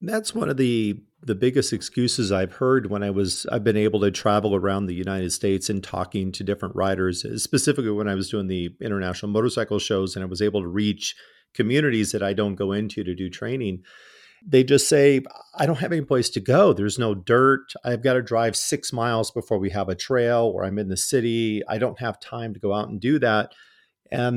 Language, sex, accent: English, male, American